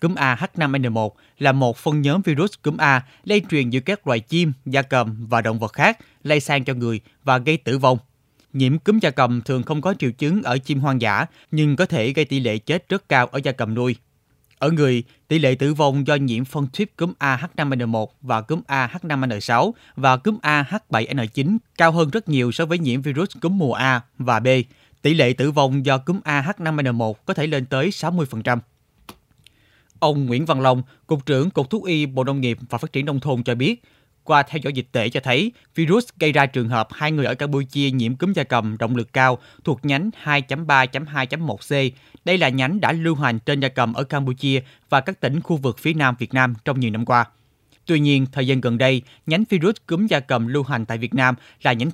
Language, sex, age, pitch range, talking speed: Vietnamese, male, 20-39, 125-155 Hz, 220 wpm